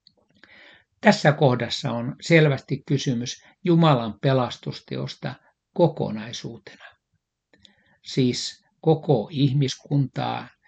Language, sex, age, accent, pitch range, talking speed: Finnish, male, 60-79, native, 120-150 Hz, 60 wpm